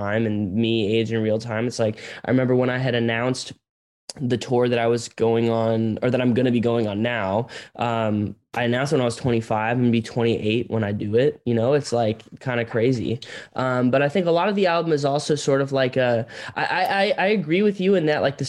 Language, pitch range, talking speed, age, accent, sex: English, 115-130 Hz, 250 wpm, 10-29, American, male